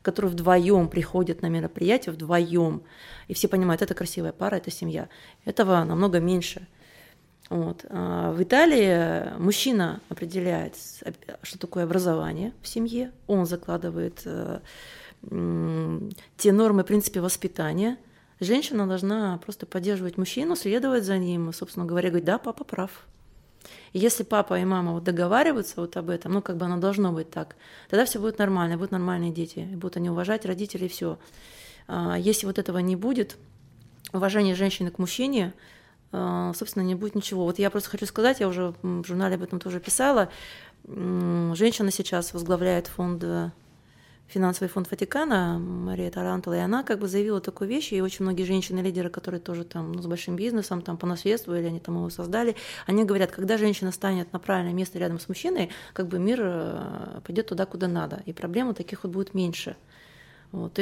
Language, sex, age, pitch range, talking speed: Russian, female, 30-49, 175-205 Hz, 160 wpm